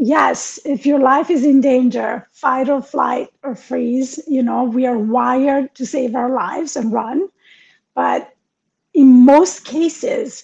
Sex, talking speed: female, 155 wpm